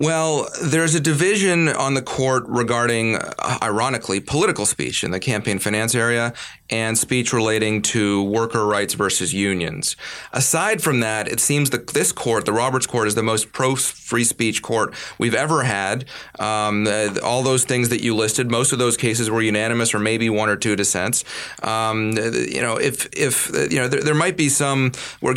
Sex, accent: male, American